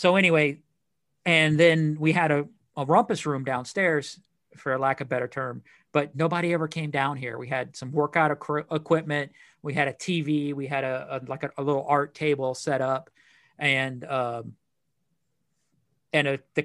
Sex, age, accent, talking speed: male, 40-59, American, 175 wpm